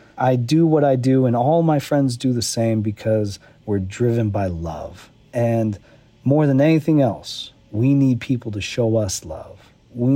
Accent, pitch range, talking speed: American, 115-150 Hz, 175 wpm